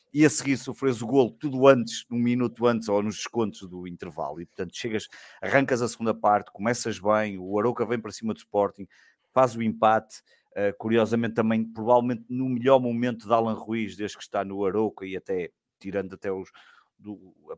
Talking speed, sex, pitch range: 195 wpm, male, 95-120 Hz